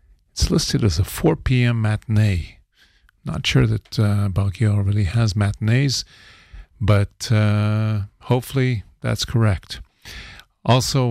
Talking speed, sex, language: 115 wpm, male, English